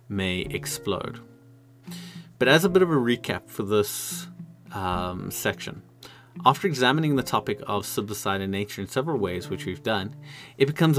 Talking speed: 160 wpm